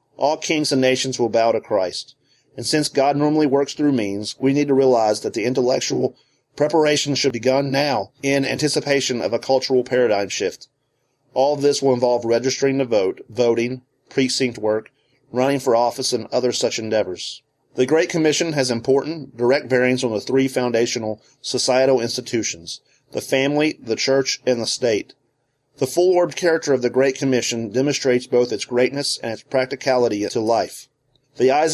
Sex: male